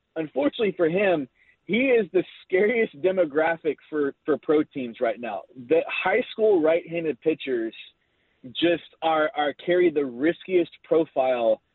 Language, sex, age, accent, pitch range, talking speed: English, male, 30-49, American, 150-205 Hz, 135 wpm